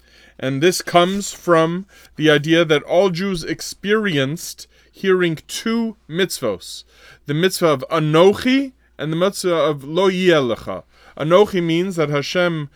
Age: 30-49